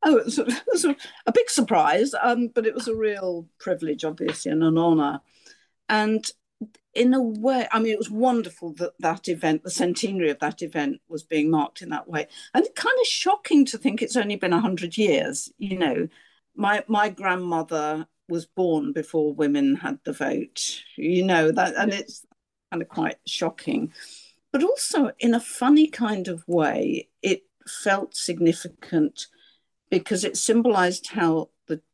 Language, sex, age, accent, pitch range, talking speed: English, female, 50-69, British, 160-260 Hz, 170 wpm